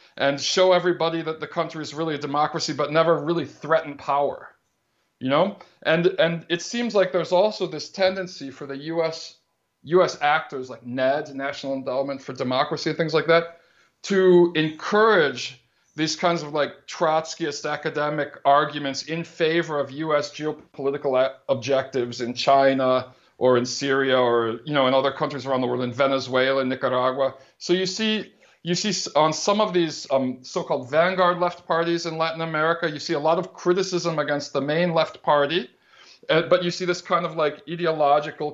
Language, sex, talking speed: English, male, 175 wpm